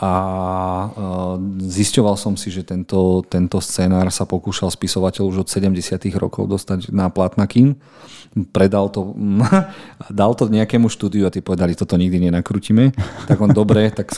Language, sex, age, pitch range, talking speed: Slovak, male, 40-59, 90-105 Hz, 145 wpm